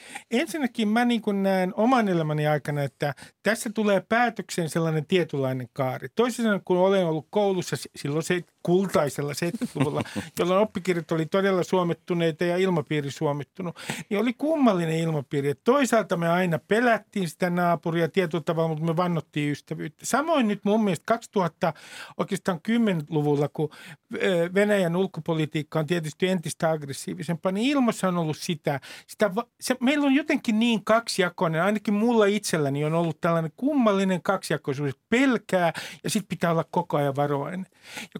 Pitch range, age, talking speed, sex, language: 160-220 Hz, 50-69, 140 wpm, male, Finnish